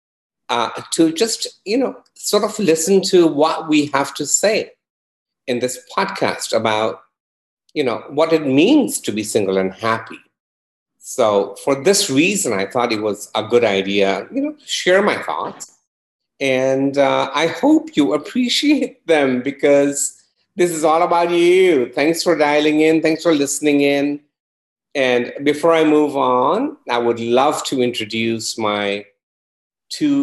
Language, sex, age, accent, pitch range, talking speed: English, male, 50-69, Indian, 115-165 Hz, 155 wpm